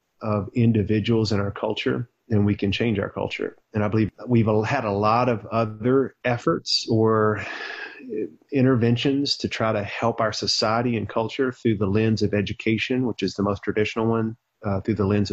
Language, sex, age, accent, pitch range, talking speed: English, male, 30-49, American, 105-120 Hz, 180 wpm